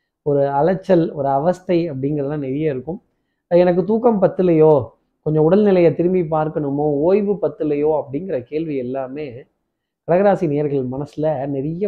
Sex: male